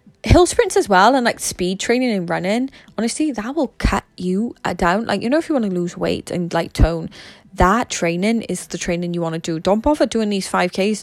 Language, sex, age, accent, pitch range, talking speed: English, female, 20-39, British, 180-230 Hz, 235 wpm